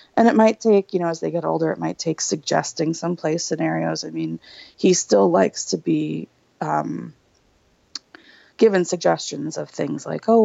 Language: English